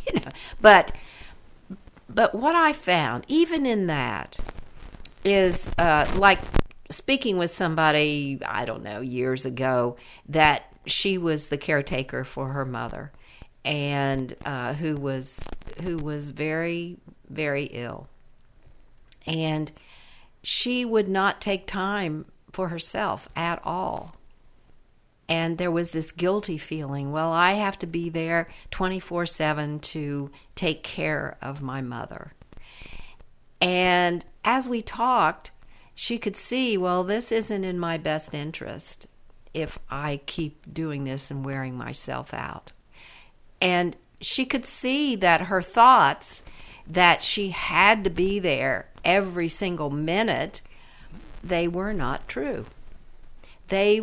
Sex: female